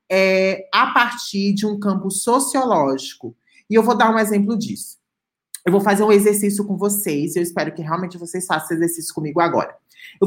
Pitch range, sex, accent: 175-225 Hz, male, Brazilian